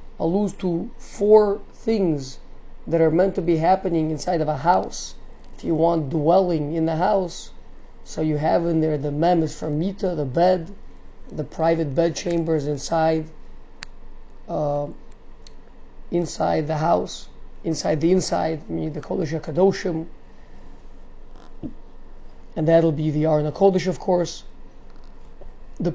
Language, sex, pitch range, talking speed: English, male, 155-180 Hz, 130 wpm